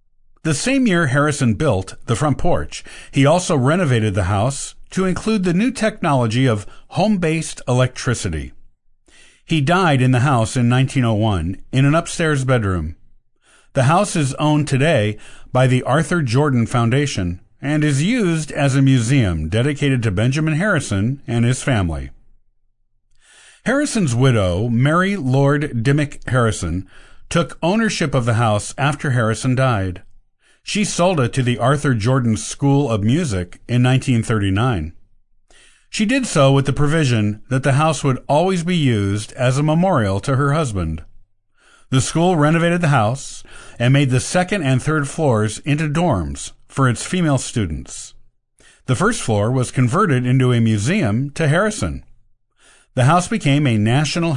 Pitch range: 110-155 Hz